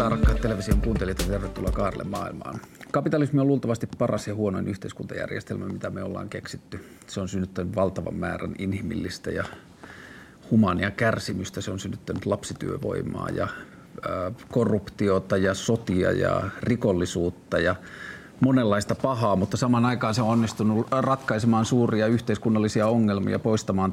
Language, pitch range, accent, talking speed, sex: Finnish, 100-120 Hz, native, 130 wpm, male